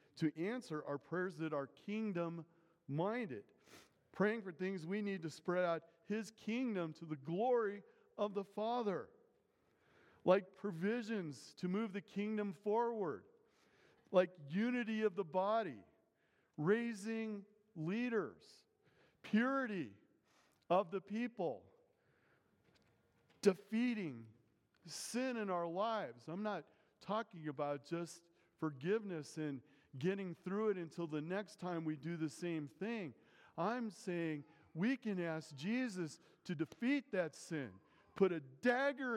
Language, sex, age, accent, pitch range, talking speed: English, male, 50-69, American, 150-210 Hz, 120 wpm